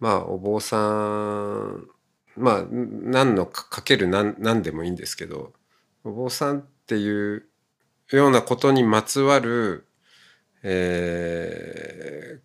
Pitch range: 90-130 Hz